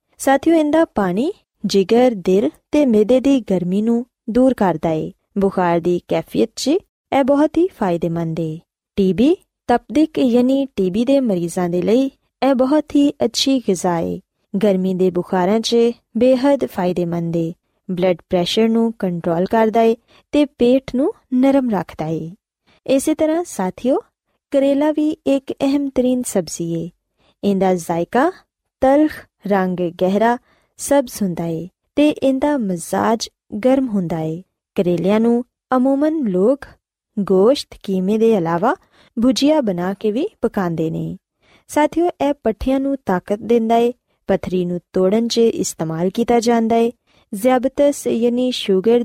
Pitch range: 185-270 Hz